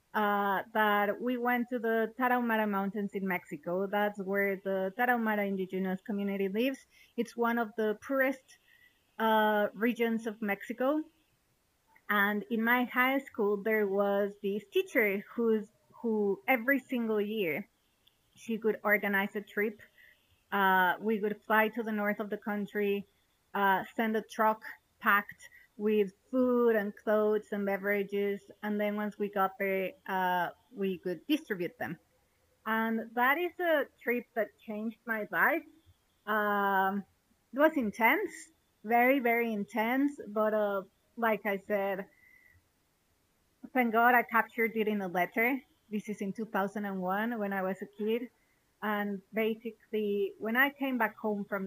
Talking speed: 140 wpm